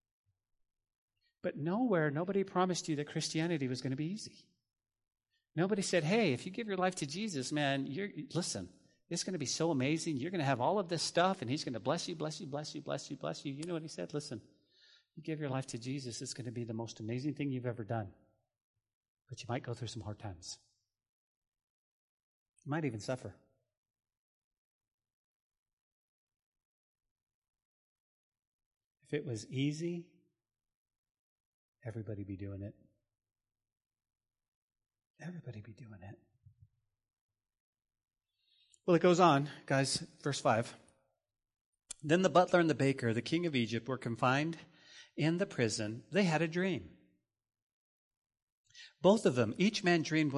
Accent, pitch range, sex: American, 110-170 Hz, male